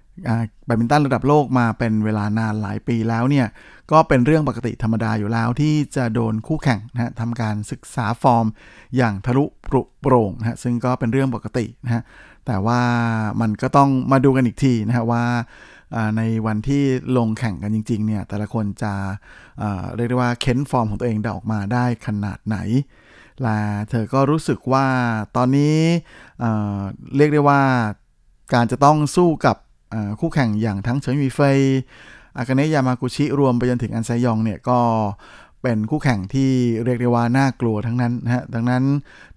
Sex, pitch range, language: male, 110-130 Hz, Thai